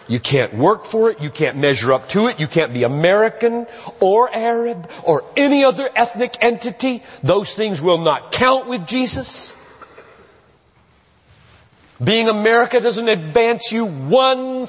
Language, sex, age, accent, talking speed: English, male, 40-59, American, 145 wpm